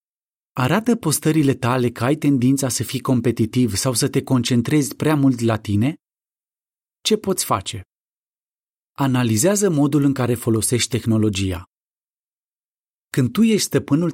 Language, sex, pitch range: Romanian, male, 115-155 Hz